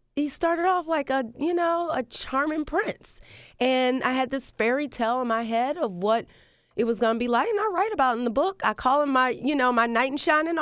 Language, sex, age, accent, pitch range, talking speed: English, female, 30-49, American, 170-250 Hz, 250 wpm